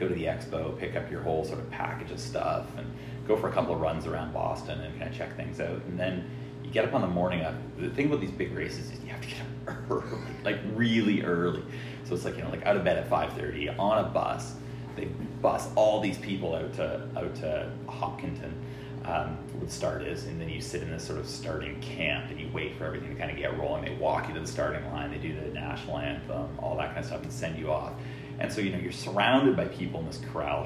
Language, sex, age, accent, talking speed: English, male, 30-49, American, 260 wpm